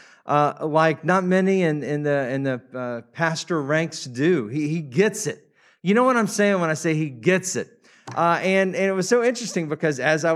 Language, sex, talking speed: English, male, 220 wpm